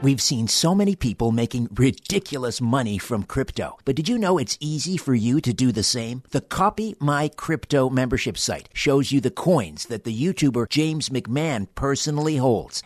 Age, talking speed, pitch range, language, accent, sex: 50-69, 180 wpm, 120-150 Hz, English, American, male